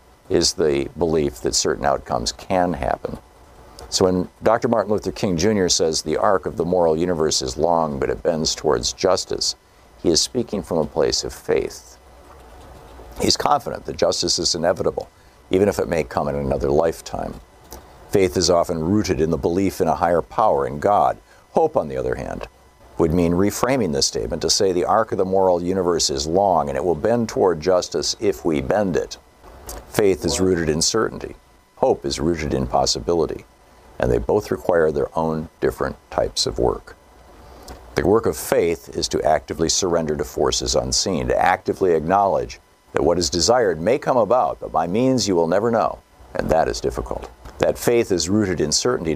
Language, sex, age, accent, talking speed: English, male, 50-69, American, 185 wpm